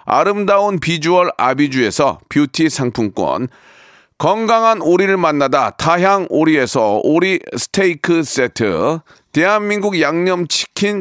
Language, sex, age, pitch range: Korean, male, 40-59, 155-195 Hz